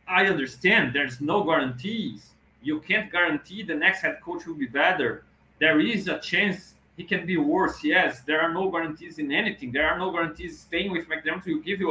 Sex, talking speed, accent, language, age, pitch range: male, 200 wpm, Brazilian, English, 30-49, 130-175 Hz